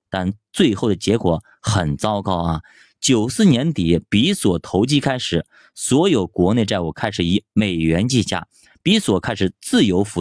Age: 20-39